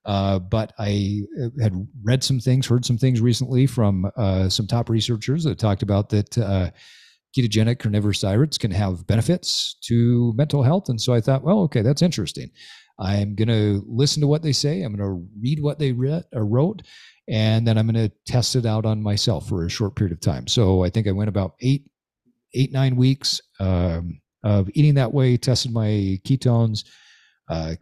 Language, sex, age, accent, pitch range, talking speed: English, male, 40-59, American, 100-125 Hz, 190 wpm